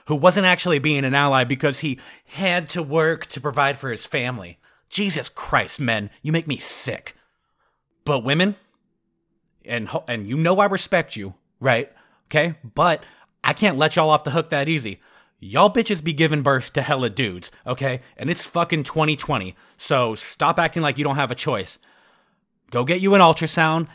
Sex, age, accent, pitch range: male, 30-49, American, 135-170 Hz